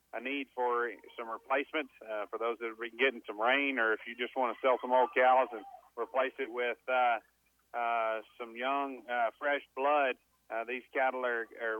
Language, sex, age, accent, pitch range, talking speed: English, male, 40-59, American, 115-130 Hz, 200 wpm